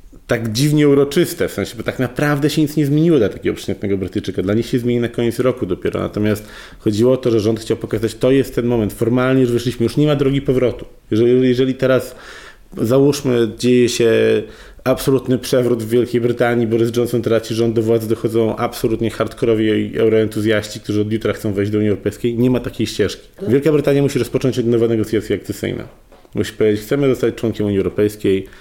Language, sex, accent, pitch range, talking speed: Polish, male, native, 100-125 Hz, 195 wpm